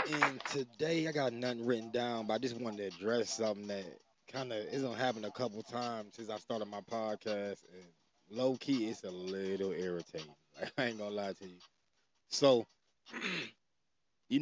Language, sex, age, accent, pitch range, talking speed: English, male, 20-39, American, 100-120 Hz, 185 wpm